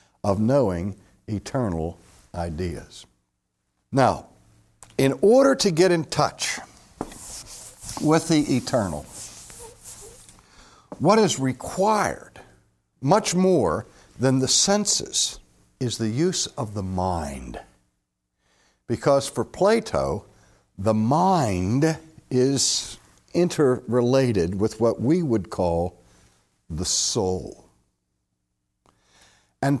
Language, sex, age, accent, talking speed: English, male, 60-79, American, 85 wpm